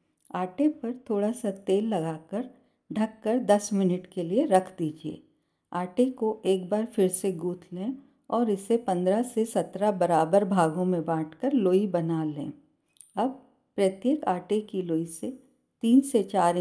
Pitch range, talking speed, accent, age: 180-235 Hz, 150 wpm, native, 50-69